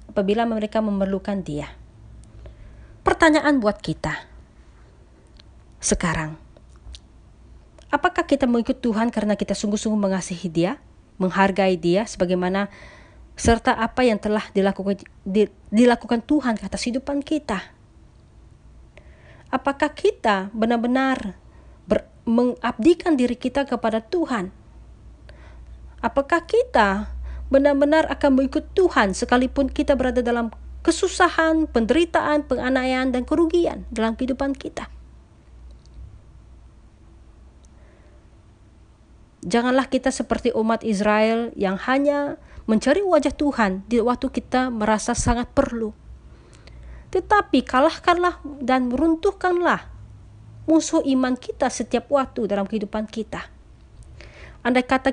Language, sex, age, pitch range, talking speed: Malay, female, 30-49, 200-280 Hz, 95 wpm